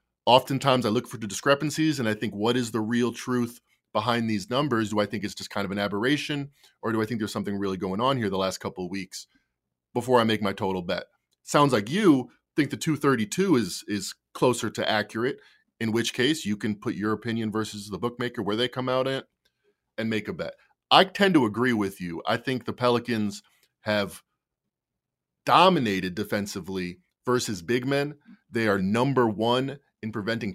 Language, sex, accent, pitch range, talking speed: English, male, American, 105-125 Hz, 195 wpm